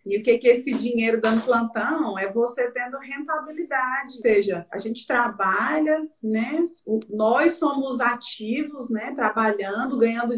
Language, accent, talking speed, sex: Portuguese, Brazilian, 150 wpm, female